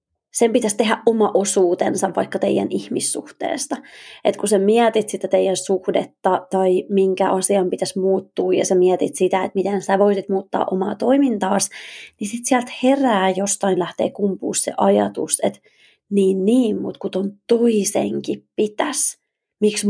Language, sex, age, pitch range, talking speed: Finnish, female, 20-39, 190-245 Hz, 150 wpm